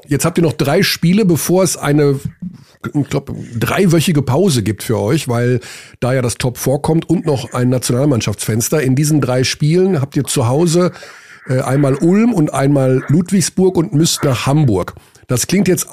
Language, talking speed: German, 170 wpm